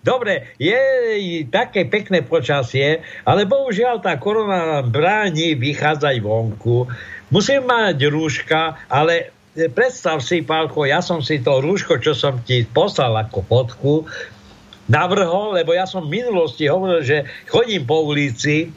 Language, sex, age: Slovak, male, 60-79